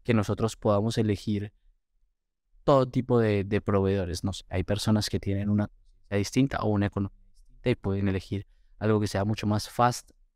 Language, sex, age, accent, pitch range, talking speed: English, male, 20-39, Colombian, 100-120 Hz, 180 wpm